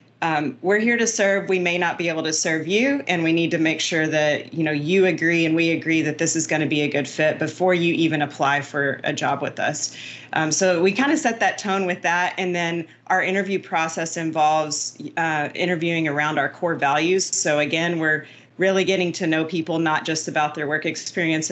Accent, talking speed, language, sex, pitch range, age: American, 225 wpm, English, female, 155-175 Hz, 30-49